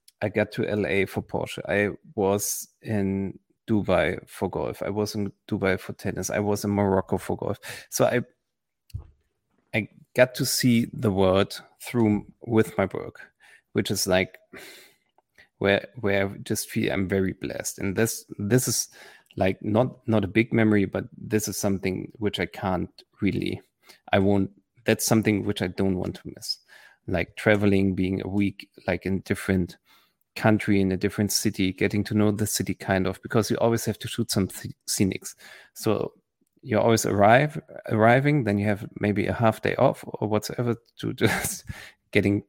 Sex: male